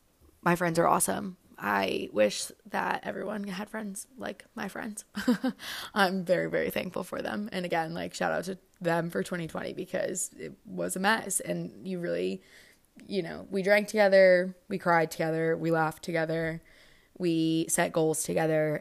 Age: 20-39